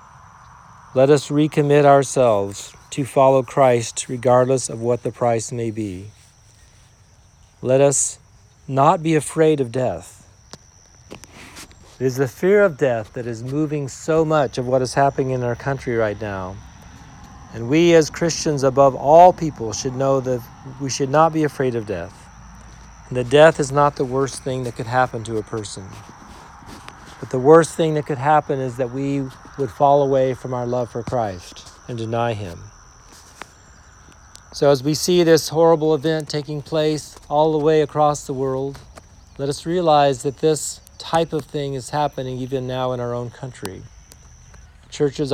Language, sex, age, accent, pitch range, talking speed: English, male, 50-69, American, 115-145 Hz, 165 wpm